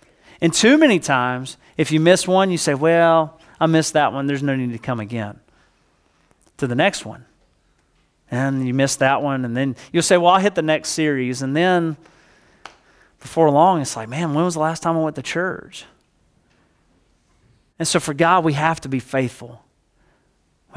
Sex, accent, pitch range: male, American, 125-175 Hz